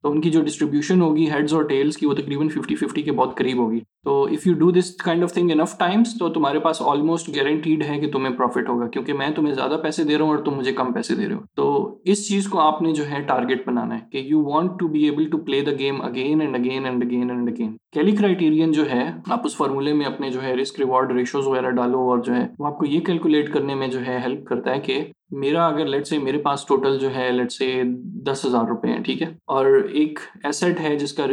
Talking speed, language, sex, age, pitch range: 175 wpm, Urdu, male, 20-39, 135-160 Hz